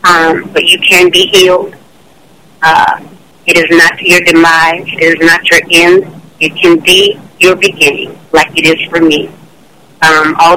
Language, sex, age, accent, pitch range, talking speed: English, female, 40-59, American, 165-205 Hz, 165 wpm